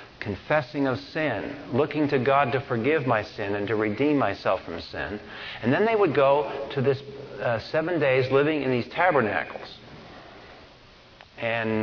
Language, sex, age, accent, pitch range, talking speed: English, male, 50-69, American, 115-150 Hz, 155 wpm